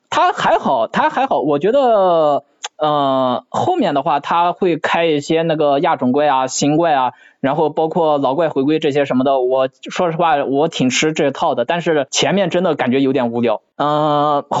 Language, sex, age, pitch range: Chinese, male, 20-39, 145-190 Hz